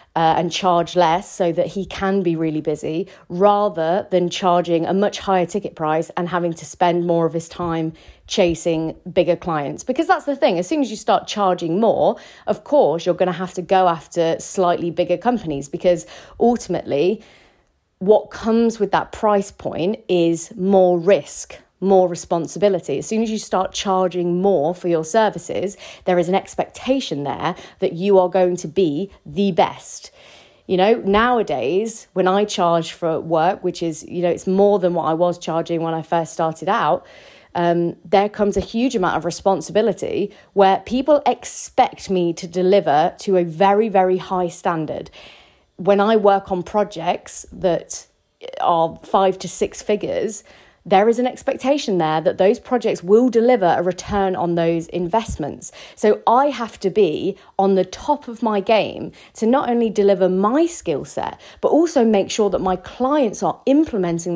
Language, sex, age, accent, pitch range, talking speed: English, female, 30-49, British, 175-210 Hz, 175 wpm